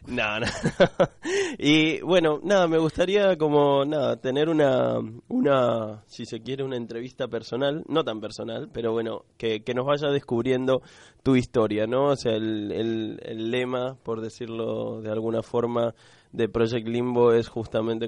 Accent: Argentinian